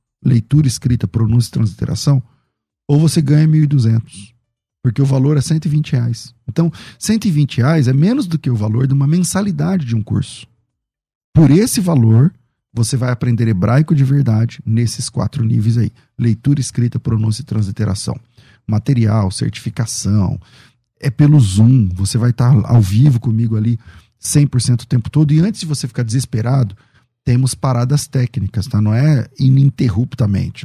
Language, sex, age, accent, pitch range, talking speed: Portuguese, male, 40-59, Brazilian, 115-150 Hz, 155 wpm